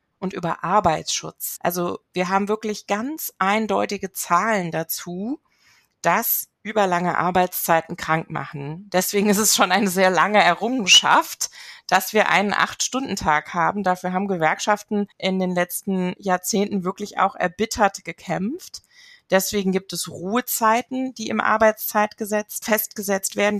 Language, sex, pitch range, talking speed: German, female, 180-215 Hz, 125 wpm